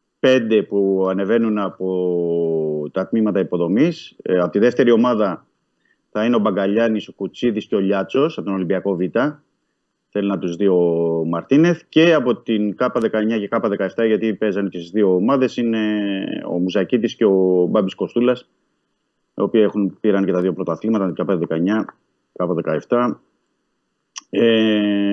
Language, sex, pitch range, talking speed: Greek, male, 90-110 Hz, 155 wpm